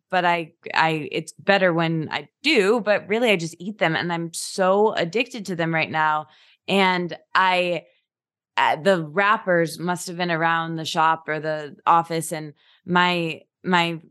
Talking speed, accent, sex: 155 wpm, American, female